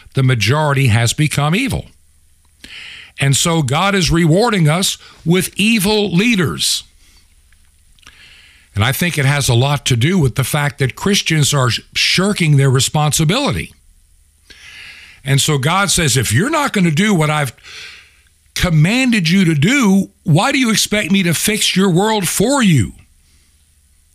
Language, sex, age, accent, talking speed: English, male, 60-79, American, 145 wpm